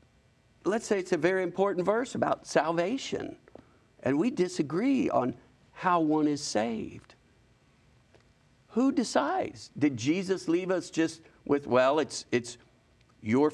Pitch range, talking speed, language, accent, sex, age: 125-175 Hz, 130 wpm, English, American, male, 50-69